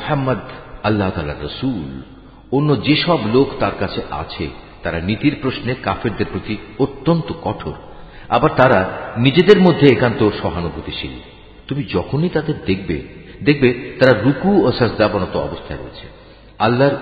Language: Bengali